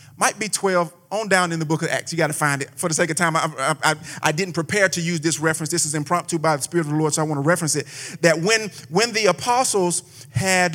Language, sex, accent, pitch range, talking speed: English, male, American, 150-185 Hz, 285 wpm